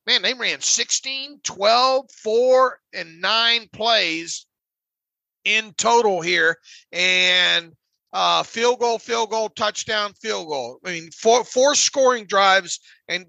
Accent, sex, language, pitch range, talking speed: American, male, English, 185-225 Hz, 125 wpm